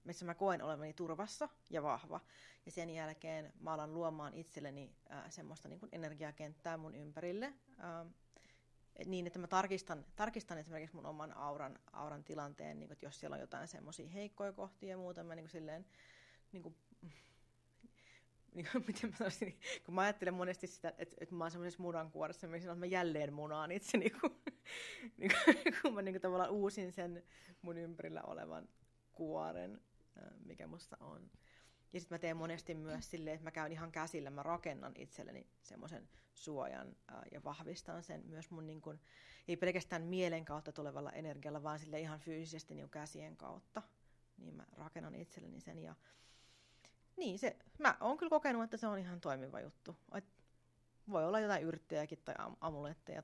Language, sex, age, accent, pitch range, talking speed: Finnish, female, 30-49, native, 150-185 Hz, 160 wpm